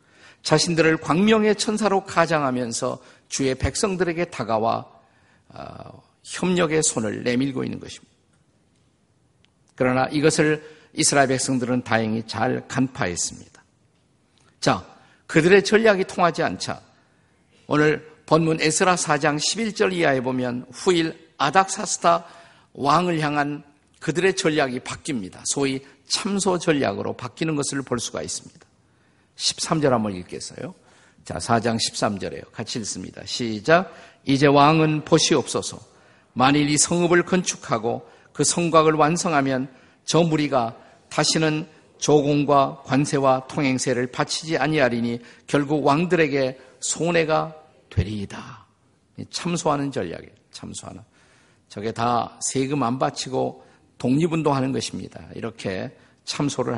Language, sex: Korean, male